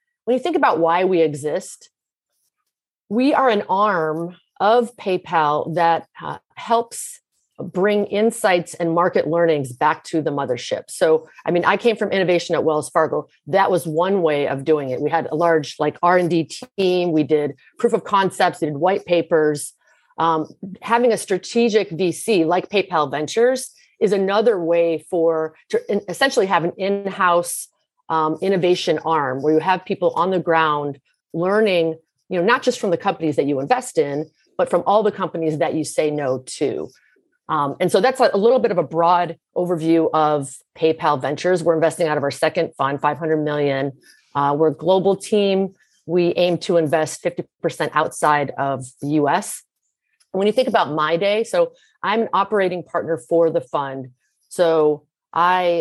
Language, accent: English, American